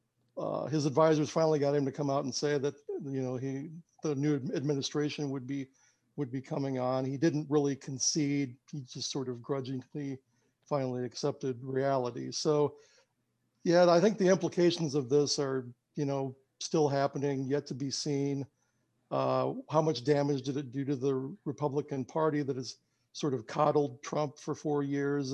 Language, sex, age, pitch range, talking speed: English, male, 60-79, 130-150 Hz, 175 wpm